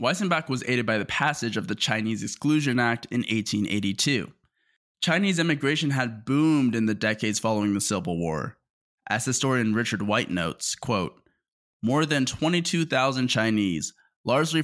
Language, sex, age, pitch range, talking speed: English, male, 20-39, 105-140 Hz, 140 wpm